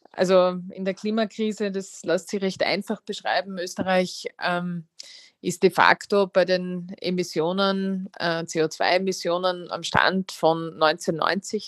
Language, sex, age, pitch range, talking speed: German, female, 20-39, 170-190 Hz, 125 wpm